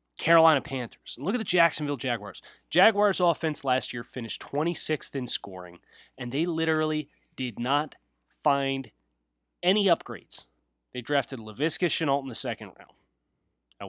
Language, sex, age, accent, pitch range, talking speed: English, male, 30-49, American, 105-155 Hz, 145 wpm